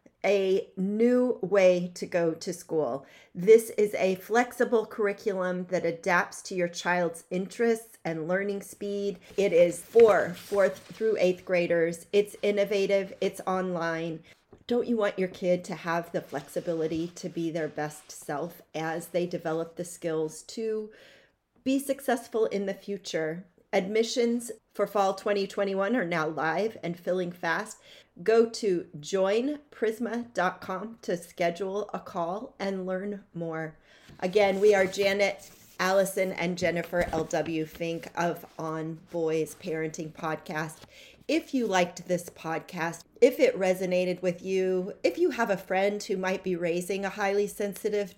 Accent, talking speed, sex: American, 140 wpm, female